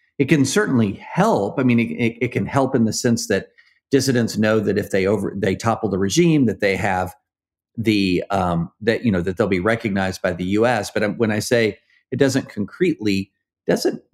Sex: male